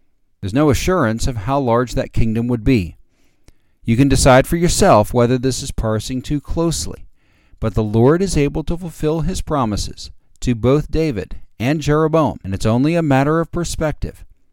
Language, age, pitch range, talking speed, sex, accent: English, 50-69, 100-135 Hz, 175 wpm, male, American